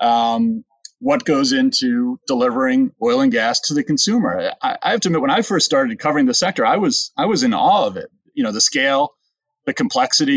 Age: 30-49